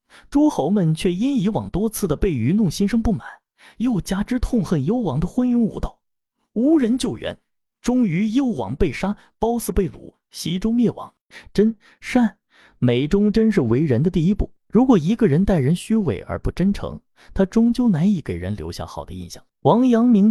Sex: male